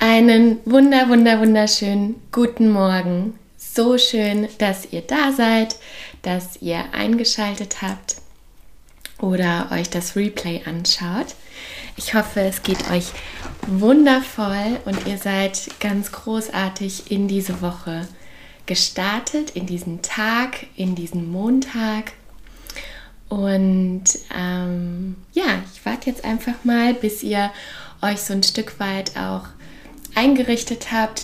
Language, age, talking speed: German, 20-39, 115 wpm